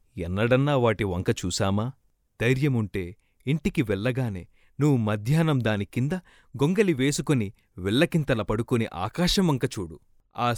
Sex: male